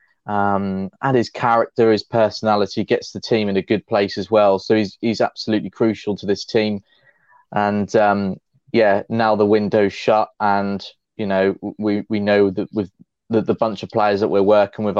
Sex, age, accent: male, 20-39, British